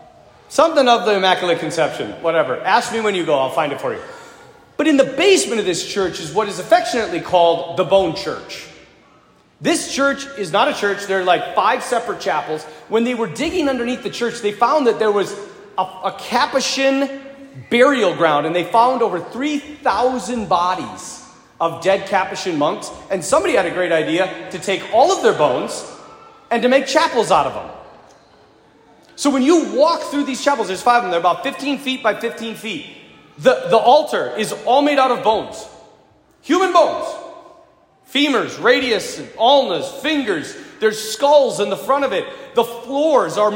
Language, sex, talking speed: English, male, 180 wpm